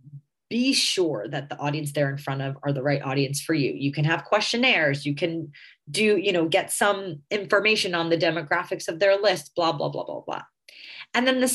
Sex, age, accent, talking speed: female, 30-49, American, 215 wpm